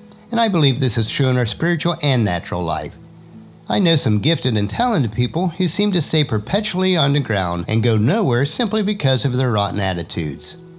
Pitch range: 110-170 Hz